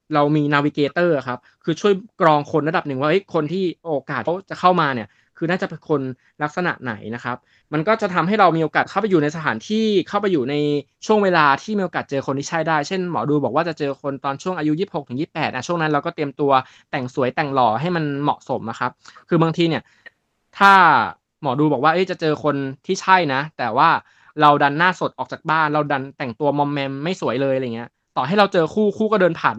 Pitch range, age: 135-175 Hz, 20-39